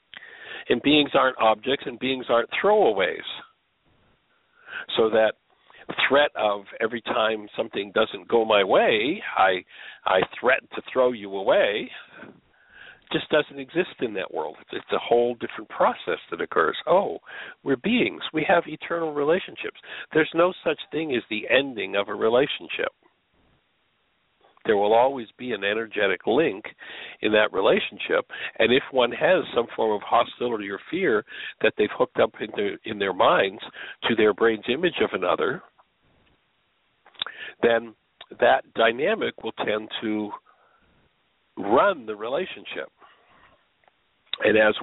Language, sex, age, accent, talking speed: English, male, 60-79, American, 140 wpm